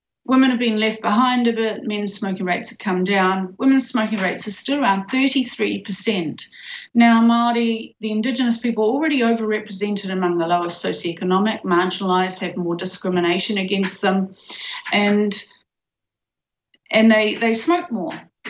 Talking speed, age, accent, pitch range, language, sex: 145 wpm, 40-59, Australian, 185-235 Hz, English, female